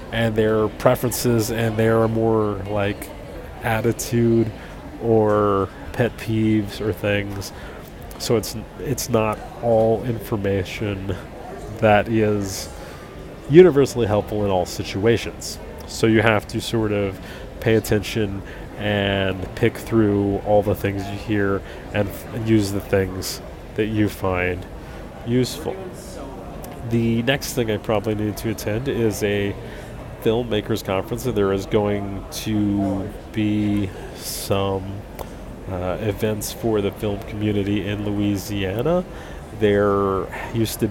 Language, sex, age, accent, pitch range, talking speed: English, male, 30-49, American, 100-115 Hz, 120 wpm